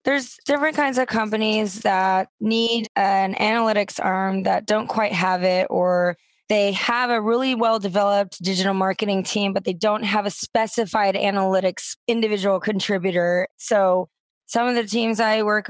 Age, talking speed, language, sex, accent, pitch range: 20-39, 155 wpm, English, female, American, 185-215 Hz